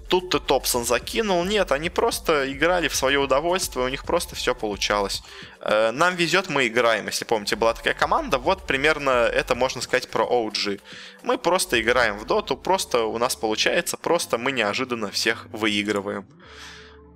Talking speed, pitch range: 155 wpm, 110-150 Hz